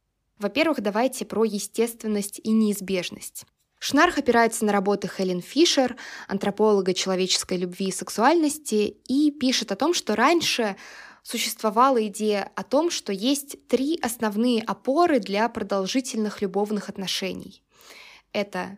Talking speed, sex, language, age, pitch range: 120 wpm, female, Russian, 20-39, 195-235 Hz